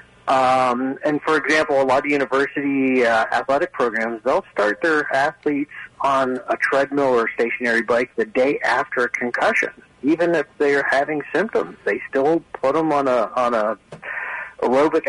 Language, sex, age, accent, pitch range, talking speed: English, male, 40-59, American, 120-150 Hz, 160 wpm